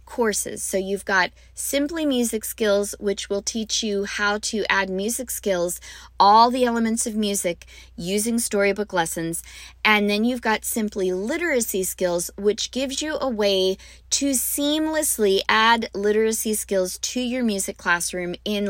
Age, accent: 20-39, American